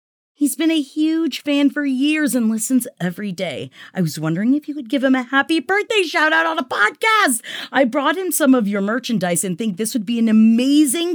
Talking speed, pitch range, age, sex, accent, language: 220 wpm, 200-305 Hz, 30-49, female, American, English